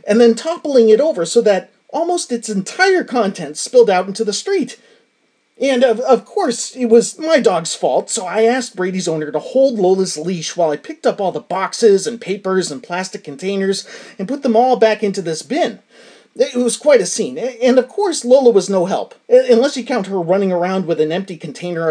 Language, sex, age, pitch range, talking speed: English, male, 30-49, 180-270 Hz, 210 wpm